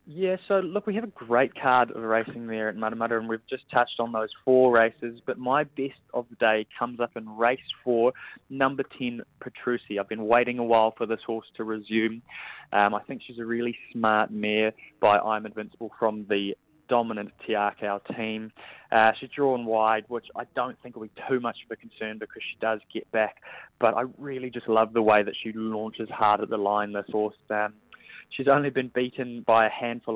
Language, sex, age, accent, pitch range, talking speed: English, male, 20-39, Australian, 110-120 Hz, 210 wpm